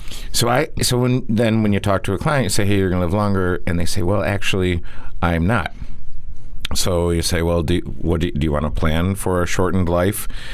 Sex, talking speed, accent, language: male, 245 wpm, American, English